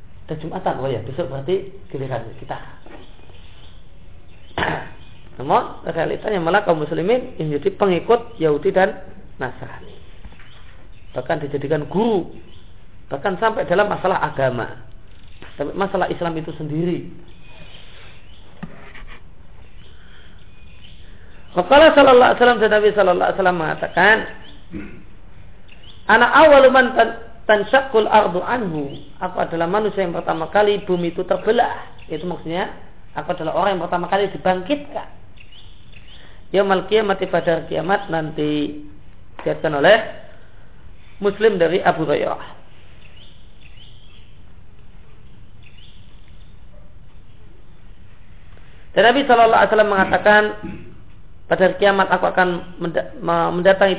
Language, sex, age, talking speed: Indonesian, male, 40-59, 90 wpm